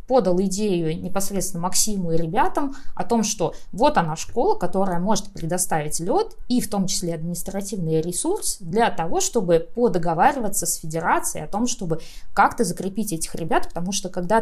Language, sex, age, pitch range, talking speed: Russian, female, 20-39, 165-205 Hz, 160 wpm